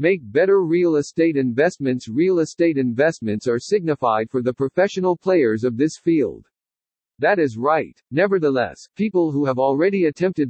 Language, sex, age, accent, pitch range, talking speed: English, male, 50-69, American, 125-170 Hz, 150 wpm